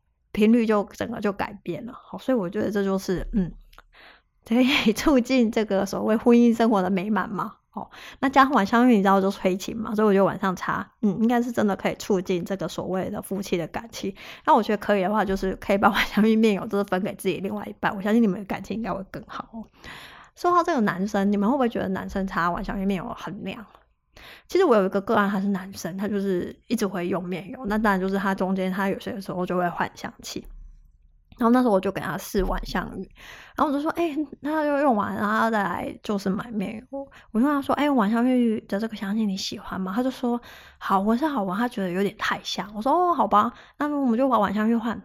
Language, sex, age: Chinese, female, 20-39